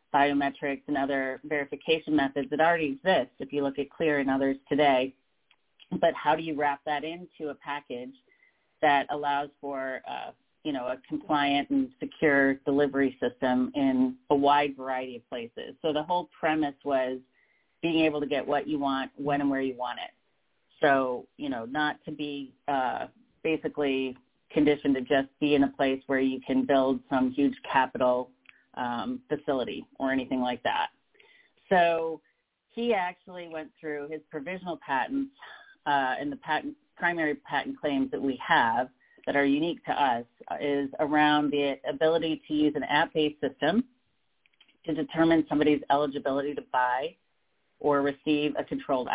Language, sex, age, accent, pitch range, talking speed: English, female, 40-59, American, 135-160 Hz, 160 wpm